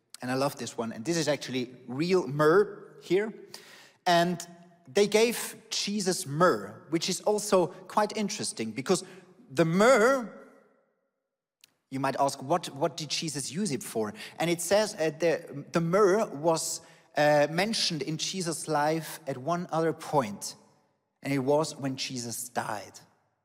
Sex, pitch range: male, 145-195 Hz